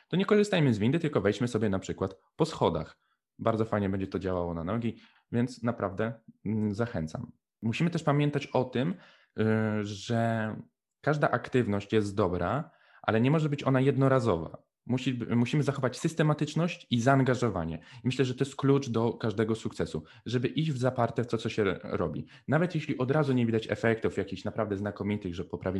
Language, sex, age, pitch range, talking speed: Polish, male, 20-39, 100-130 Hz, 165 wpm